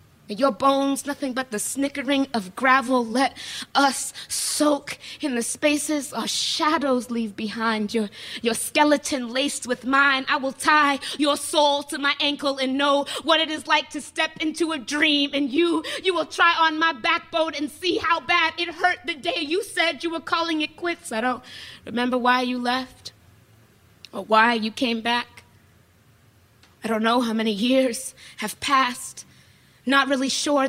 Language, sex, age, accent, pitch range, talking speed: English, female, 20-39, American, 240-295 Hz, 170 wpm